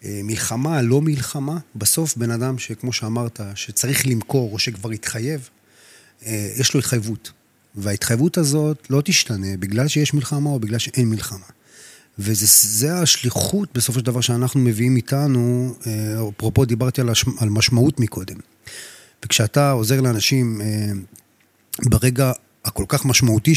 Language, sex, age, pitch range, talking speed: Hebrew, male, 30-49, 110-140 Hz, 120 wpm